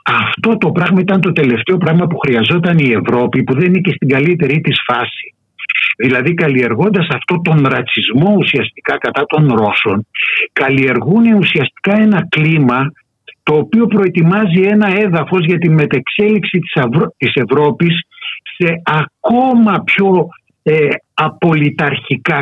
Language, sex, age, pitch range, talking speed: Greek, male, 60-79, 145-185 Hz, 125 wpm